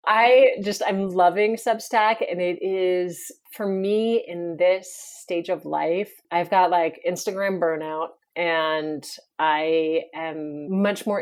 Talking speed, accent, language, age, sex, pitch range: 135 wpm, American, English, 30-49, female, 160-195 Hz